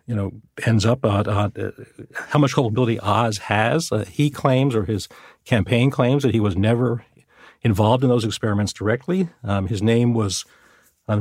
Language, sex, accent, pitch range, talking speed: English, male, American, 95-115 Hz, 170 wpm